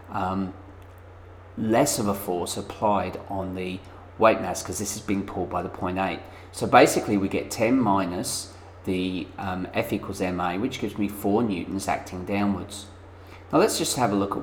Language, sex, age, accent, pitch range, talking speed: English, male, 40-59, British, 95-100 Hz, 180 wpm